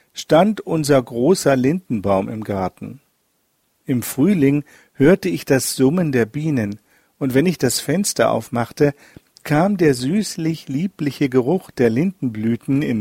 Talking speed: 125 wpm